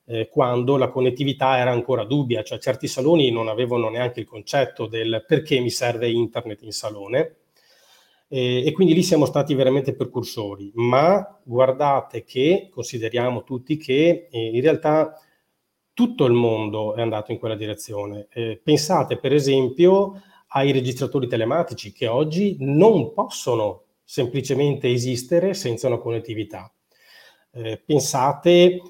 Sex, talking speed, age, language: male, 135 wpm, 30-49, Italian